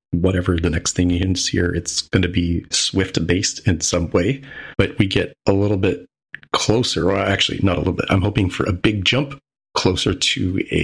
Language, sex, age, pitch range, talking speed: English, male, 30-49, 90-110 Hz, 205 wpm